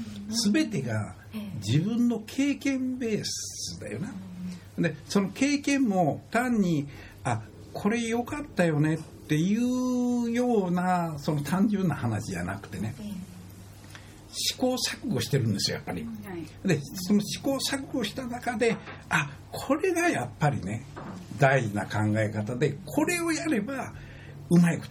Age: 60-79